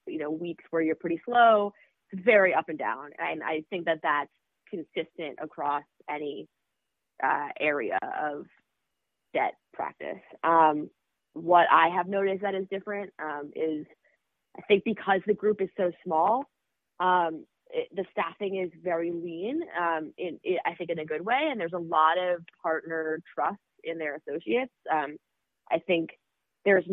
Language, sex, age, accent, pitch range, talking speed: English, female, 20-39, American, 160-195 Hz, 165 wpm